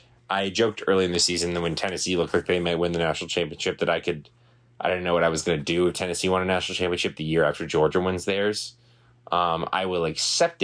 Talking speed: 260 wpm